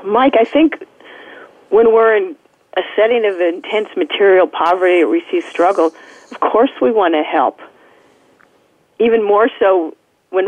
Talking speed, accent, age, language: 150 wpm, American, 50-69, English